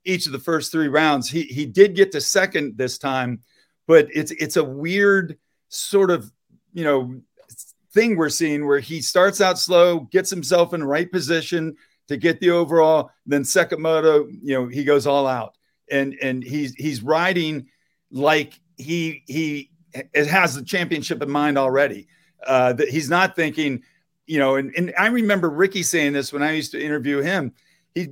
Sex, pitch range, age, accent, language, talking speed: male, 140-175 Hz, 50-69, American, English, 180 wpm